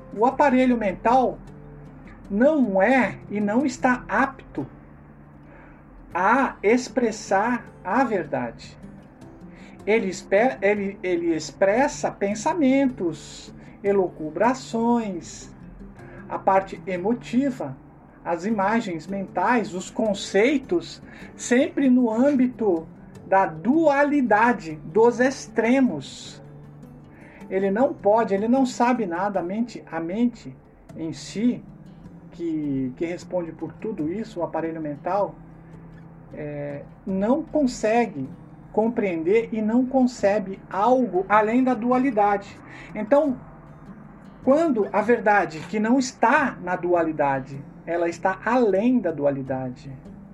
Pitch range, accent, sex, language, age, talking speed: 170-245 Hz, Brazilian, male, Portuguese, 50-69, 95 wpm